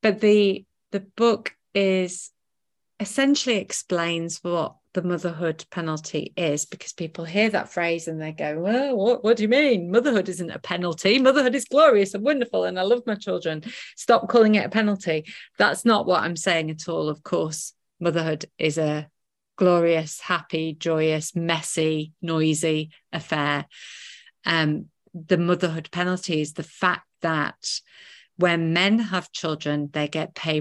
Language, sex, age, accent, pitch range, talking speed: English, female, 30-49, British, 155-190 Hz, 155 wpm